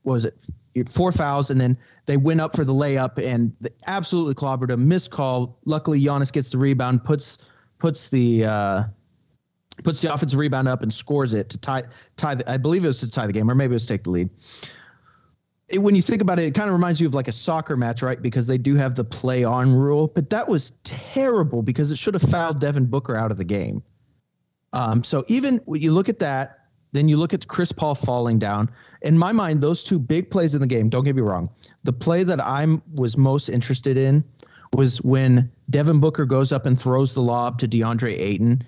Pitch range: 125-155 Hz